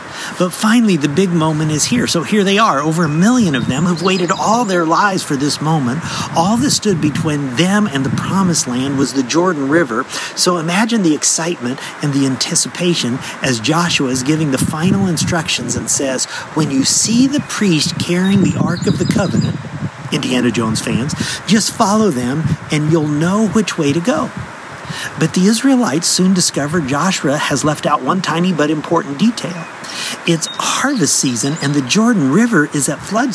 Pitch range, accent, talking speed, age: 150-200 Hz, American, 185 wpm, 50-69